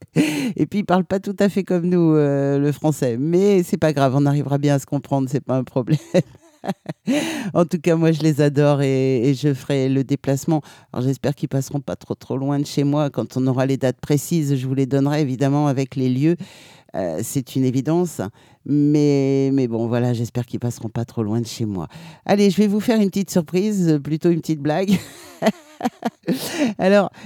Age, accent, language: 50-69, French, French